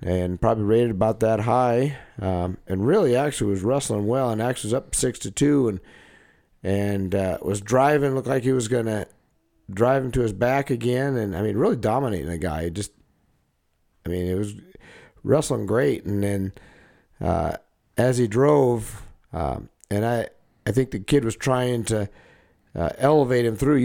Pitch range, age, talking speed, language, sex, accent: 95-120 Hz, 50-69, 180 wpm, English, male, American